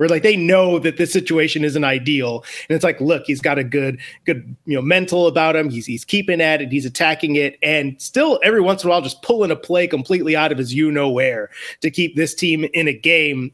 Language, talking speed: English, 250 wpm